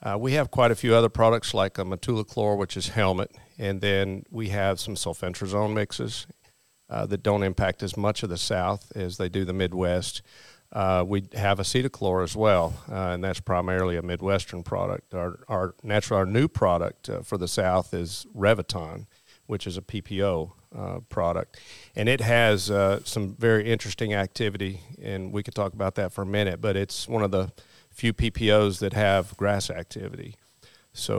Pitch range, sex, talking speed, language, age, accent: 95-110 Hz, male, 185 wpm, English, 40-59, American